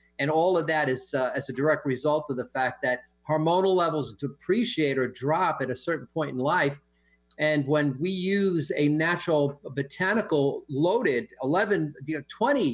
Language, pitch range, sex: English, 135-190 Hz, male